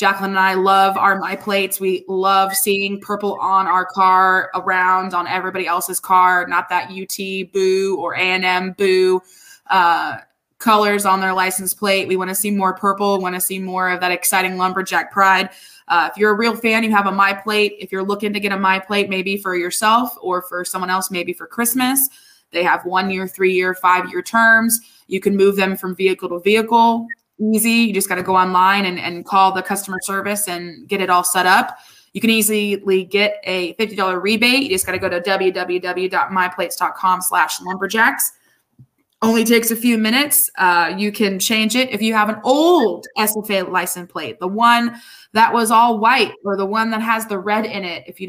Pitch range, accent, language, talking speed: 185-220 Hz, American, English, 205 wpm